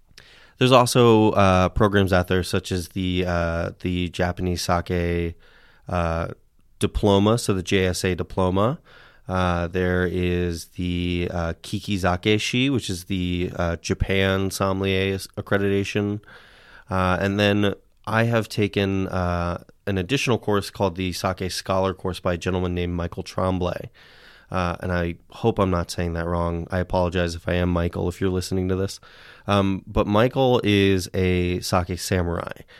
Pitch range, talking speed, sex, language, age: 90-100 Hz, 150 wpm, male, English, 30-49